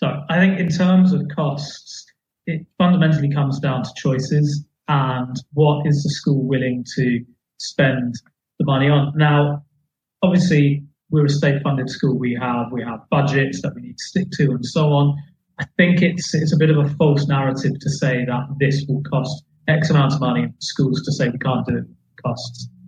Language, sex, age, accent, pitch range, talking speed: English, male, 30-49, British, 135-155 Hz, 195 wpm